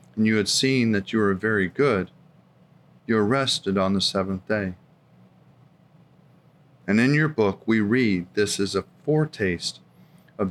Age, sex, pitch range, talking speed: 40-59, male, 95-125 Hz, 155 wpm